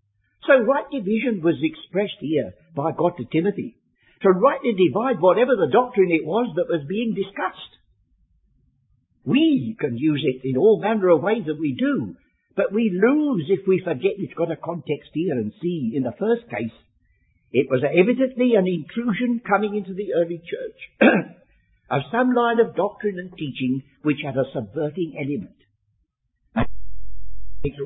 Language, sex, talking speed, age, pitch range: English, male, 160 wpm, 60-79, 150-230 Hz